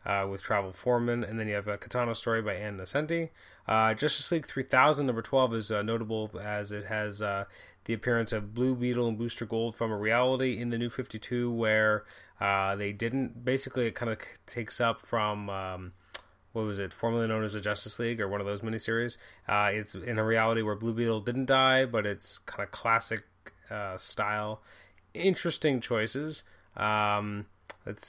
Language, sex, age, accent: English, male, 20-39, American